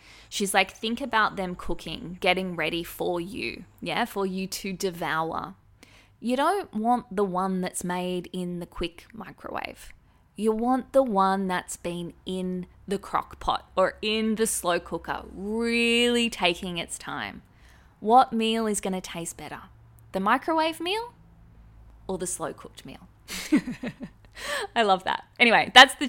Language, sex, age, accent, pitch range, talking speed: English, female, 20-39, Australian, 175-225 Hz, 150 wpm